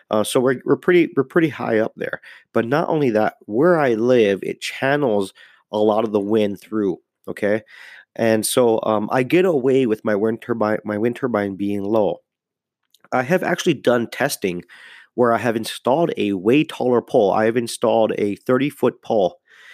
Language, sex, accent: English, male, American